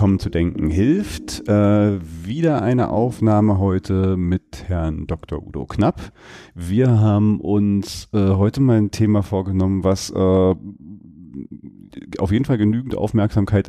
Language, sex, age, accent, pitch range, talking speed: German, male, 40-59, German, 95-115 Hz, 125 wpm